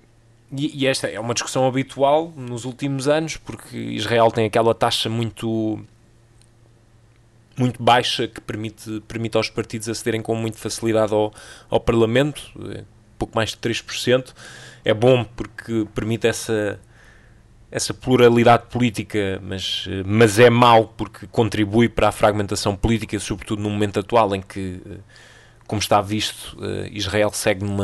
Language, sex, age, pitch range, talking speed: Portuguese, male, 20-39, 105-120 Hz, 135 wpm